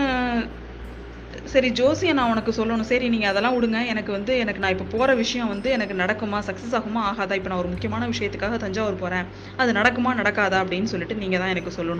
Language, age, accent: Tamil, 20-39, native